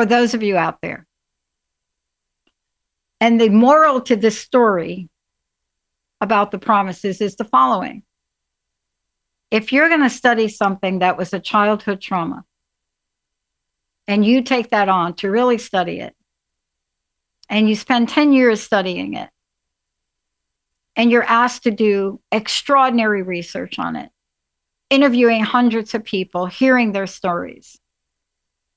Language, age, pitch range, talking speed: English, 60-79, 180-225 Hz, 125 wpm